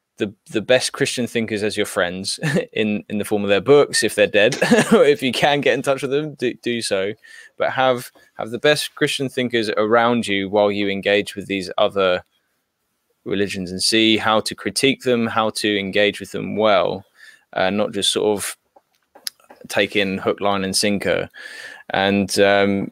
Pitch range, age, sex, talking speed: 100-125 Hz, 10-29, male, 185 wpm